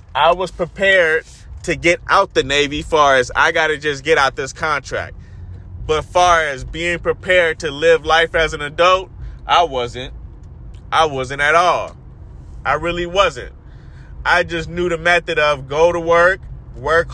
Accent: American